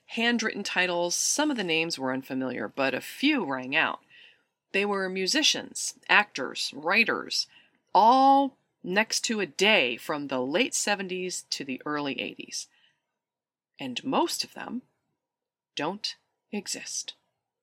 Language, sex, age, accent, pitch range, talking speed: English, female, 30-49, American, 170-290 Hz, 125 wpm